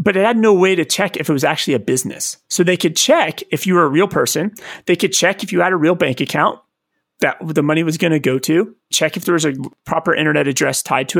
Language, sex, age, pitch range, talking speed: English, male, 30-49, 145-180 Hz, 275 wpm